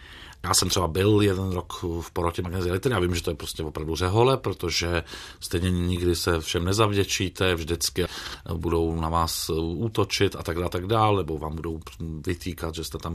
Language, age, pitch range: Czech, 40-59, 85-120 Hz